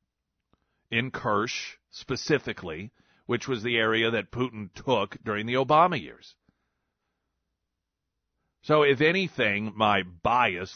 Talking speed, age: 105 wpm, 40-59